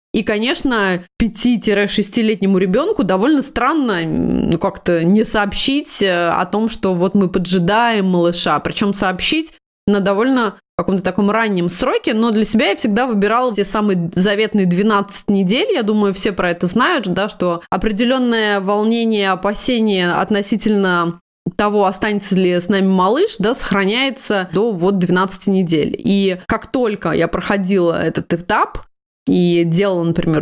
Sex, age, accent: female, 20-39, native